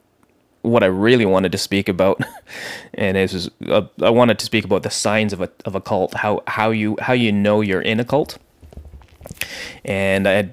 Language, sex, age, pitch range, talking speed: English, male, 20-39, 95-115 Hz, 200 wpm